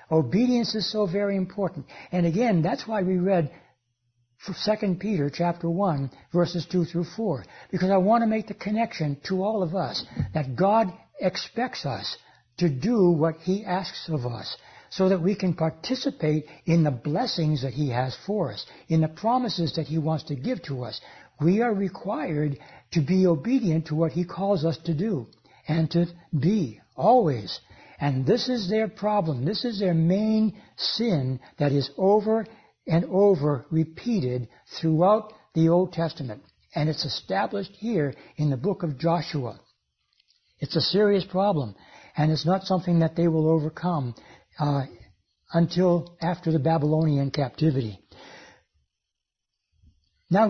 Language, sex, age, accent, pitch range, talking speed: English, male, 60-79, American, 150-200 Hz, 155 wpm